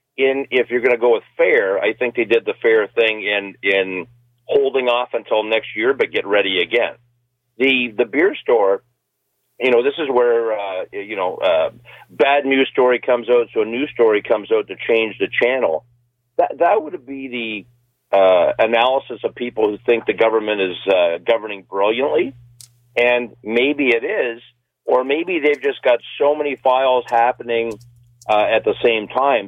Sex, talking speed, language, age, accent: male, 180 wpm, English, 40-59, American